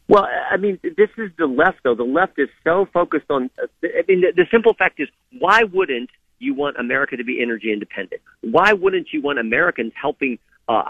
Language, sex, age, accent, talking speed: English, male, 50-69, American, 205 wpm